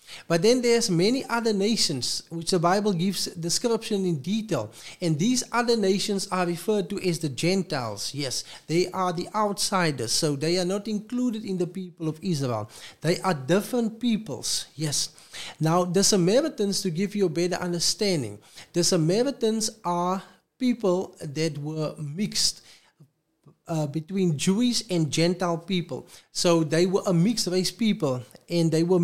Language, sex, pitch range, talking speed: English, male, 165-205 Hz, 155 wpm